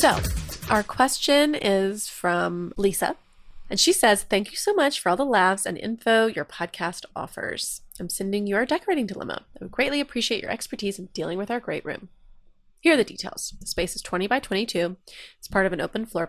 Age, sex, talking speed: 20-39, female, 205 wpm